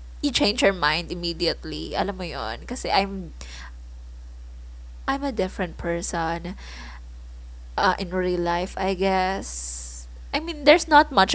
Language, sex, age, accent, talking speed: English, female, 20-39, Filipino, 125 wpm